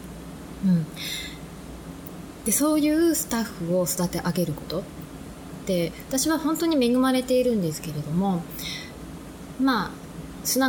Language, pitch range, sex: Japanese, 155-230 Hz, female